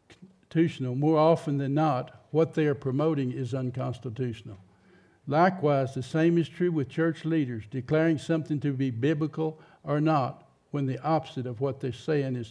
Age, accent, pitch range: 60-79, American, 125-160 Hz